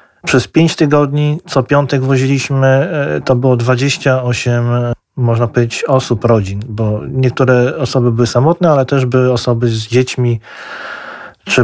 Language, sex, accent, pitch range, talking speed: Polish, male, native, 120-135 Hz, 130 wpm